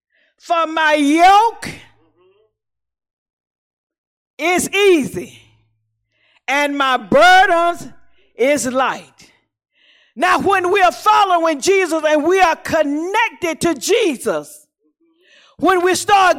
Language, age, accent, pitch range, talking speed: English, 50-69, American, 285-370 Hz, 90 wpm